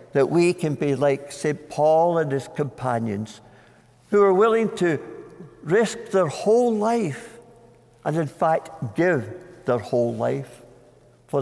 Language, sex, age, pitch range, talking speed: English, male, 60-79, 125-165 Hz, 135 wpm